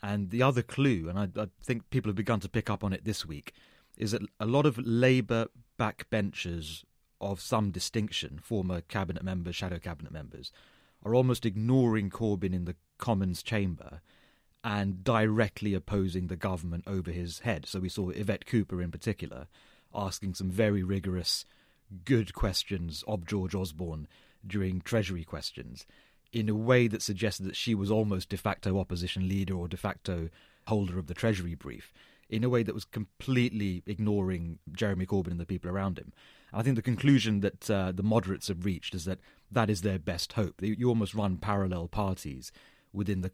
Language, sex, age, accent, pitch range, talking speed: English, male, 30-49, British, 90-110 Hz, 175 wpm